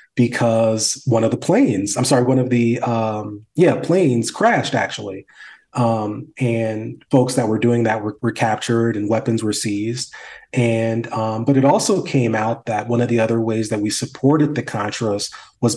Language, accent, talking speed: English, American, 185 wpm